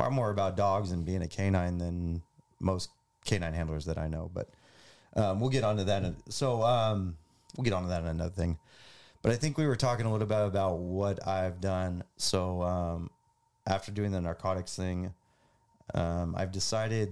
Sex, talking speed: male, 185 wpm